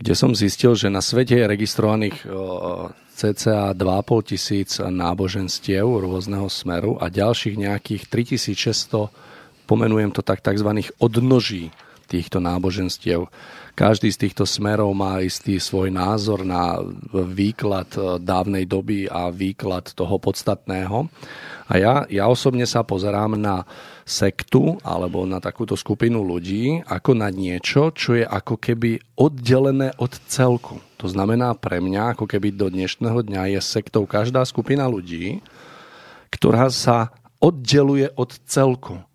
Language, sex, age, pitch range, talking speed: Slovak, male, 40-59, 100-115 Hz, 125 wpm